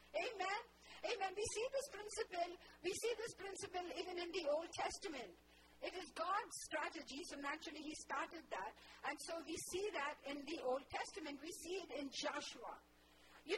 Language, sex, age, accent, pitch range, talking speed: English, female, 50-69, Indian, 280-355 Hz, 170 wpm